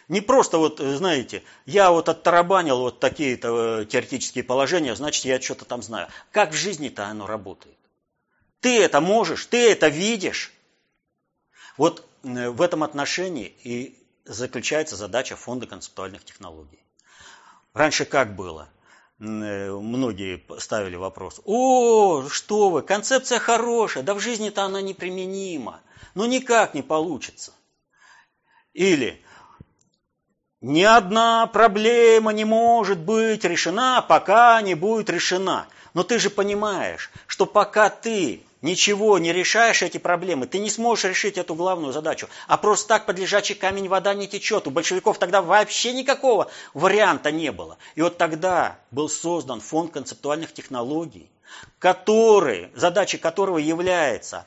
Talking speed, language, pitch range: 125 wpm, Russian, 155-215 Hz